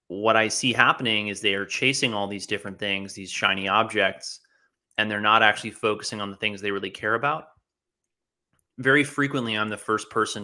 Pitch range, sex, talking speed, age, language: 100-115 Hz, male, 190 wpm, 30-49, English